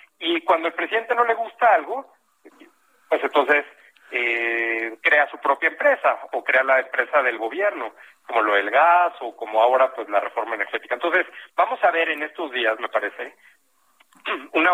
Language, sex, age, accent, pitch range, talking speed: Spanish, male, 50-69, Mexican, 130-185 Hz, 170 wpm